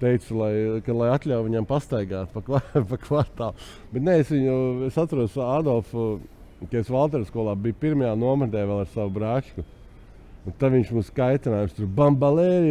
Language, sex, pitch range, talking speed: English, male, 100-130 Hz, 175 wpm